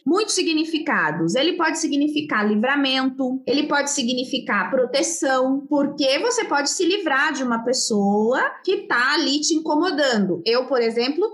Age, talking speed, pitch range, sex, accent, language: 20-39, 140 wpm, 245-330 Hz, female, Brazilian, Portuguese